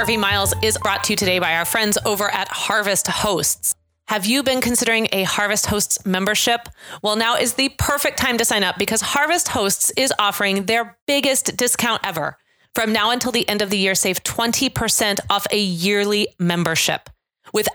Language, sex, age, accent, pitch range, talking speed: English, female, 30-49, American, 185-240 Hz, 185 wpm